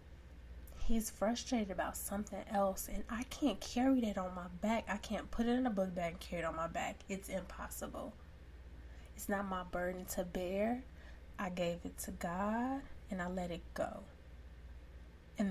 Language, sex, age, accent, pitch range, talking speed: English, female, 20-39, American, 160-210 Hz, 180 wpm